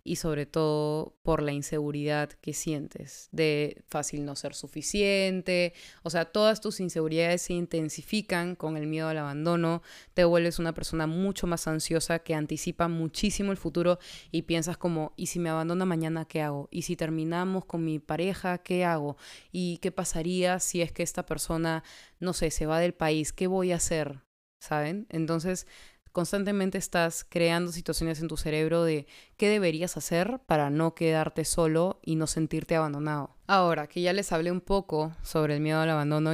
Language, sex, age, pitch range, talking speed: Spanish, female, 20-39, 155-180 Hz, 175 wpm